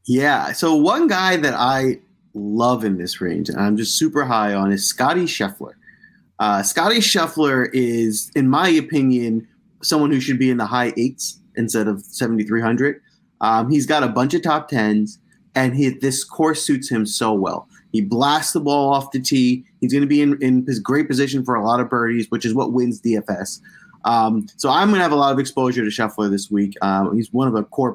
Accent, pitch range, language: American, 115-150 Hz, English